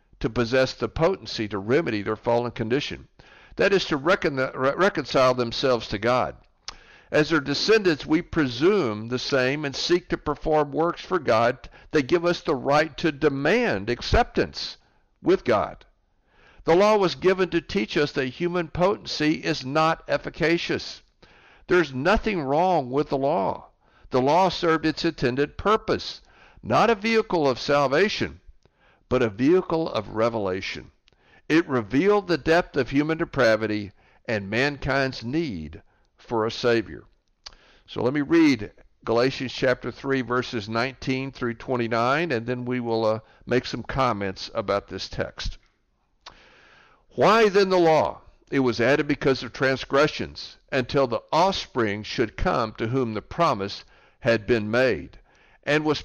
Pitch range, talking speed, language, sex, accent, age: 120-165 Hz, 145 wpm, English, male, American, 60-79